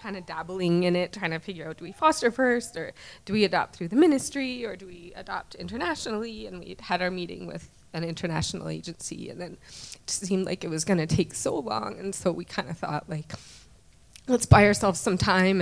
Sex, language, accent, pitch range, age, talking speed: female, English, American, 160-195 Hz, 20-39, 220 wpm